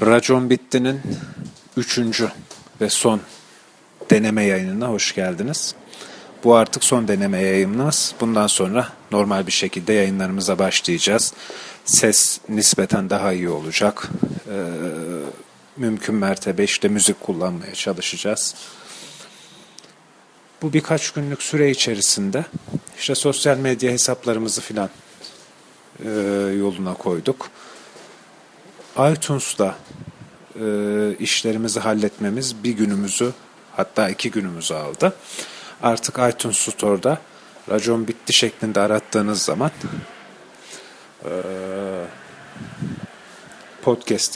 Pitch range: 100-125 Hz